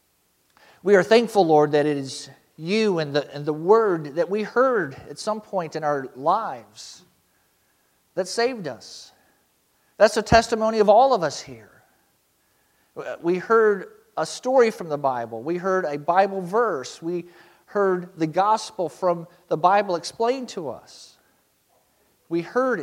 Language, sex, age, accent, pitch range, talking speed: English, male, 50-69, American, 155-205 Hz, 150 wpm